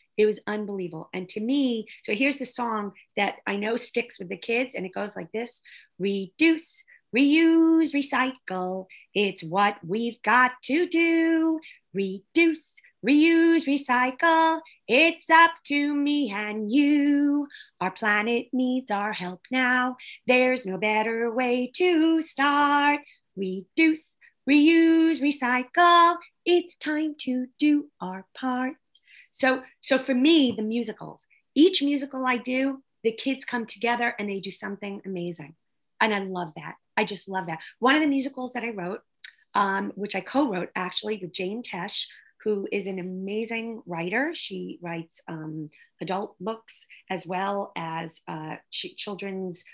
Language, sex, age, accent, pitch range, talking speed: English, female, 30-49, American, 195-290 Hz, 145 wpm